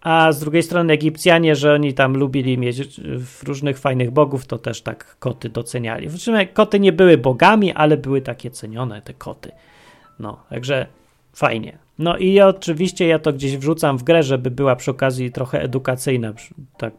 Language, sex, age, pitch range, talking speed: Polish, male, 30-49, 120-165 Hz, 170 wpm